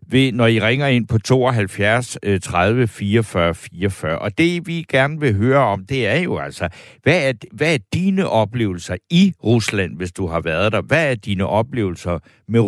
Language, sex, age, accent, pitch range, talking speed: Danish, male, 60-79, native, 100-130 Hz, 185 wpm